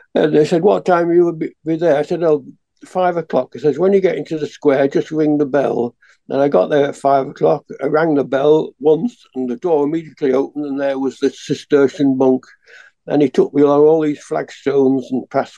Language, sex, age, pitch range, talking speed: English, male, 60-79, 135-170 Hz, 230 wpm